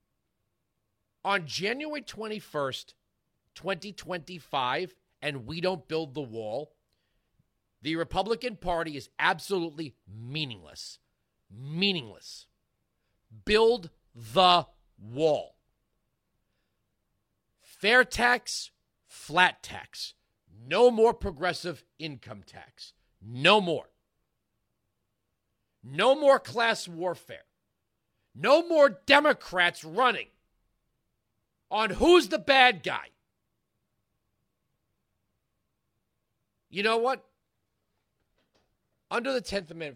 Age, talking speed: 40-59, 75 wpm